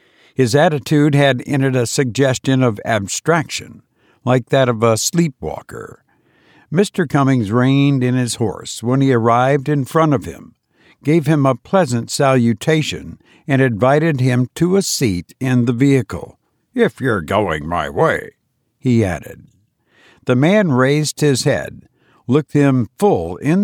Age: 60-79